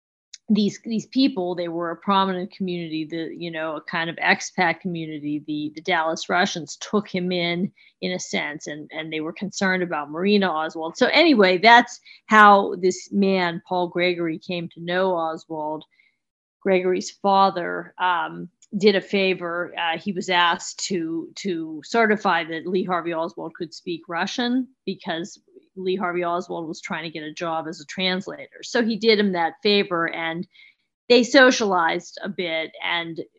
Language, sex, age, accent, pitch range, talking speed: English, female, 40-59, American, 165-200 Hz, 165 wpm